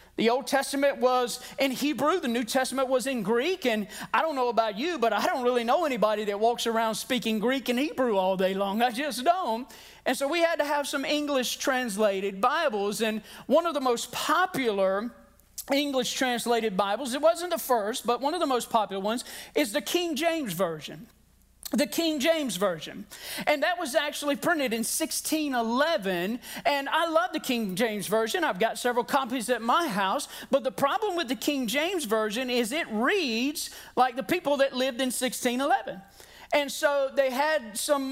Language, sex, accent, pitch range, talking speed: English, male, American, 230-295 Hz, 185 wpm